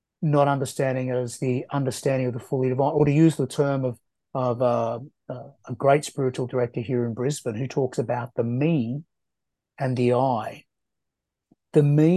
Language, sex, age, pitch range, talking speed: English, male, 30-49, 120-145 Hz, 180 wpm